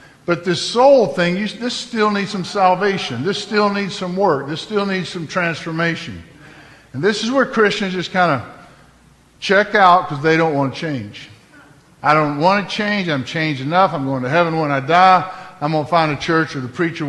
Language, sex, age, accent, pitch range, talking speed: English, male, 50-69, American, 135-180 Hz, 210 wpm